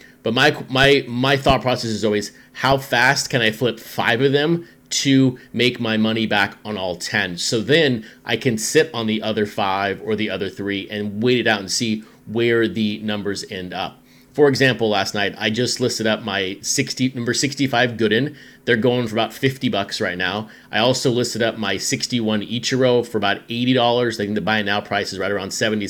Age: 30-49